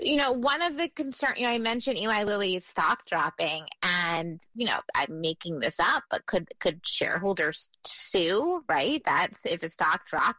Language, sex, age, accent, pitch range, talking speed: English, female, 20-39, American, 170-210 Hz, 185 wpm